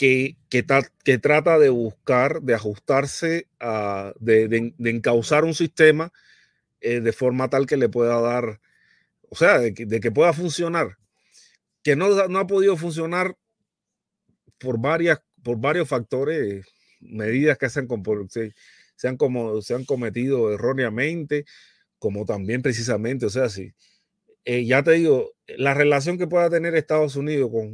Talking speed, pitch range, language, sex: 150 wpm, 115-150 Hz, Spanish, male